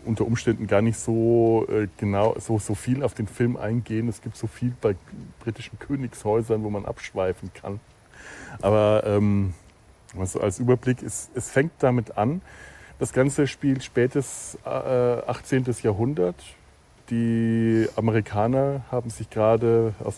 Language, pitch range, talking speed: German, 105-130 Hz, 150 wpm